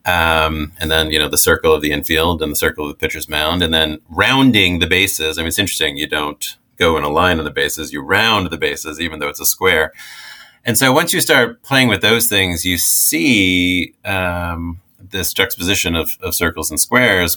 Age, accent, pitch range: 30-49, American, 80-90 Hz